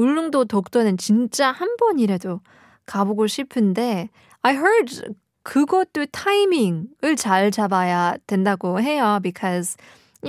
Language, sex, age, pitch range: Korean, female, 20-39, 200-280 Hz